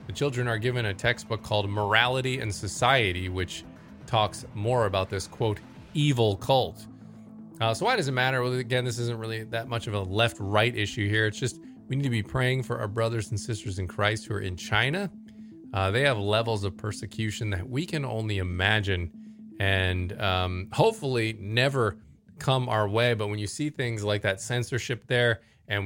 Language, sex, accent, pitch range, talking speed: English, male, American, 105-125 Hz, 190 wpm